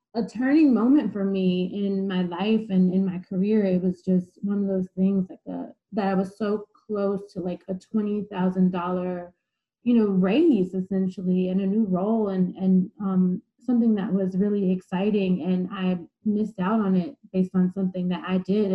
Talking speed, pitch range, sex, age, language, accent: 185 wpm, 190-225 Hz, female, 20-39, English, American